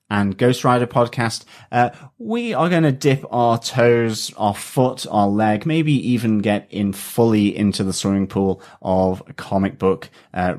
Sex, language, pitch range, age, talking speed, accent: male, English, 105-125 Hz, 30-49, 165 wpm, British